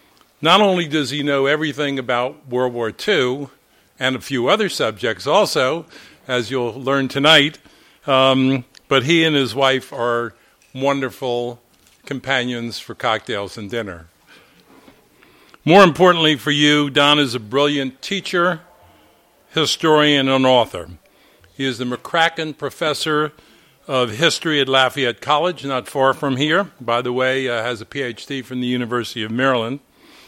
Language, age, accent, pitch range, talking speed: English, 50-69, American, 120-145 Hz, 140 wpm